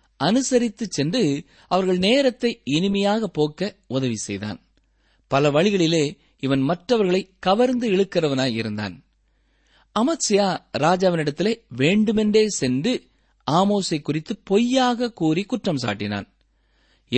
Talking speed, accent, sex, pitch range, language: 85 wpm, native, male, 130-190 Hz, Tamil